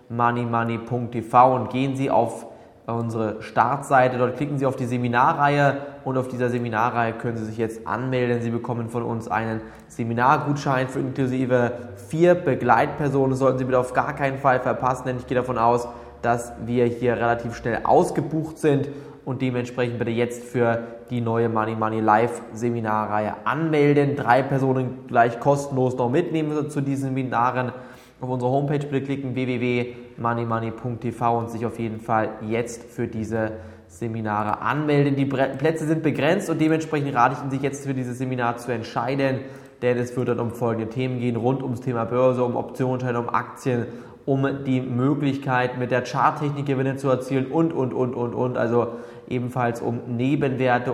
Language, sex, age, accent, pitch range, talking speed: German, male, 20-39, German, 120-135 Hz, 165 wpm